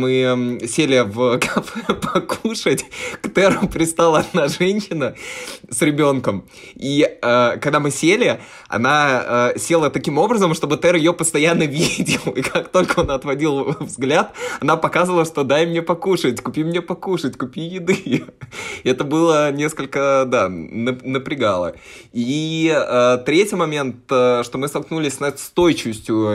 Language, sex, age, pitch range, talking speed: Russian, male, 20-39, 125-160 Hz, 125 wpm